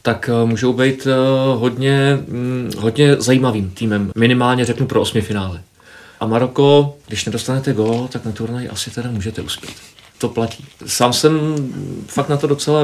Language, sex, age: Czech, male, 40-59